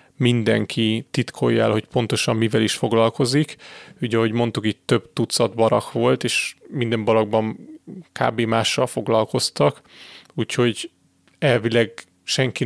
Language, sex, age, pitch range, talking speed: Hungarian, male, 30-49, 115-135 Hz, 110 wpm